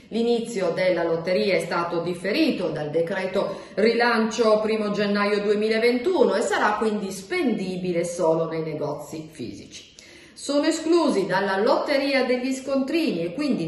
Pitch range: 185-260 Hz